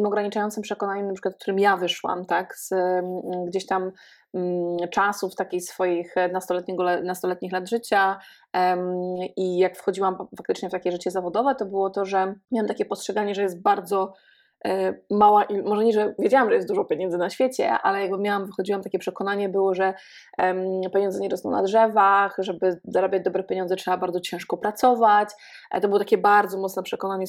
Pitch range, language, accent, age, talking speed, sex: 185-205 Hz, Polish, native, 20-39, 175 wpm, female